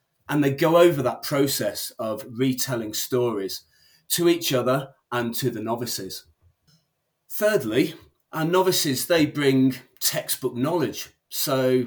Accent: British